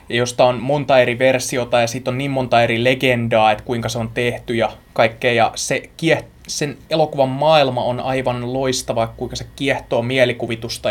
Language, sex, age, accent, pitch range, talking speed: Finnish, male, 20-39, native, 115-135 Hz, 175 wpm